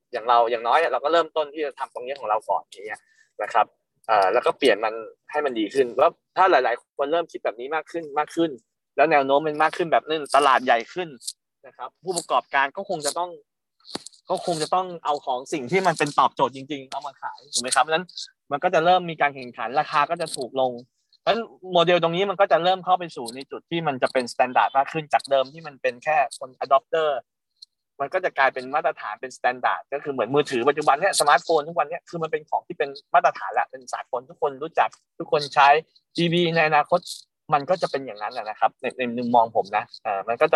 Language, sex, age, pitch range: Thai, male, 20-39, 135-180 Hz